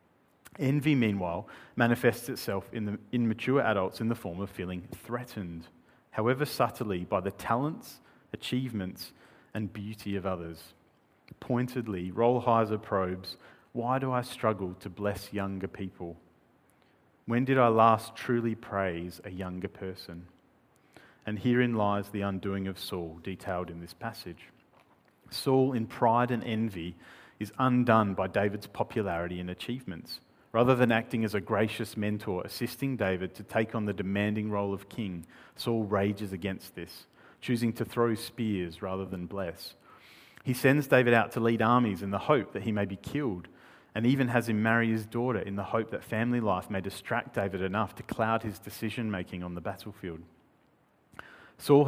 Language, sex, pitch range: English, male, 95-120 Hz